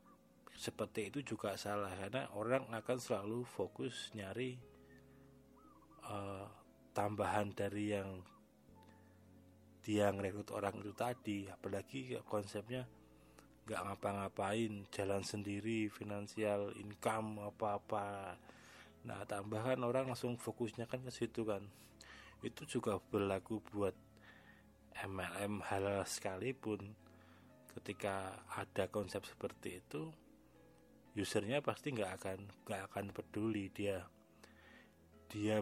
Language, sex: Indonesian, male